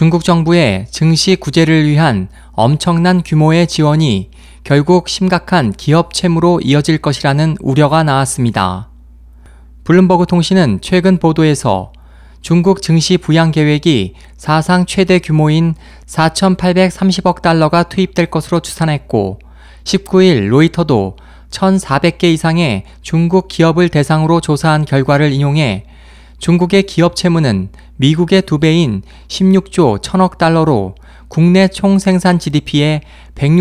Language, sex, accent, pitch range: Korean, male, native, 135-180 Hz